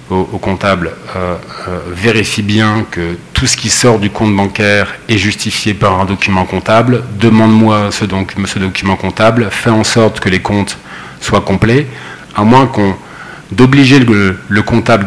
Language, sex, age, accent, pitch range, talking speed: French, male, 40-59, French, 95-115 Hz, 155 wpm